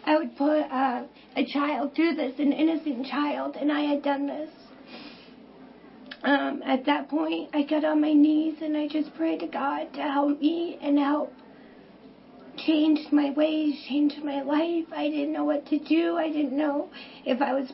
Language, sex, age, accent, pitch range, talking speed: English, female, 40-59, American, 265-300 Hz, 185 wpm